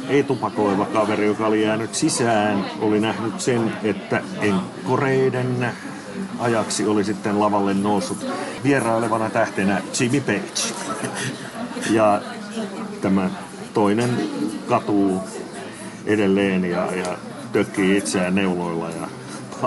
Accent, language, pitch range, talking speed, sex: native, Finnish, 100-115 Hz, 95 wpm, male